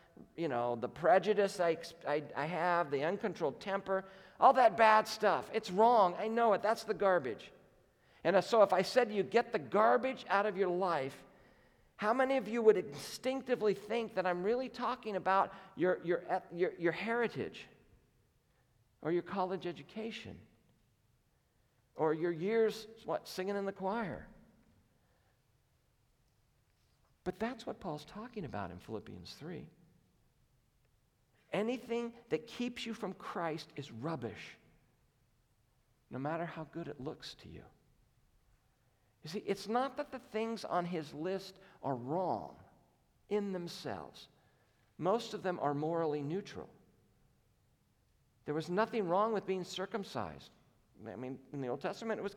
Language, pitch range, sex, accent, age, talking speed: English, 160-220 Hz, male, American, 50-69, 145 wpm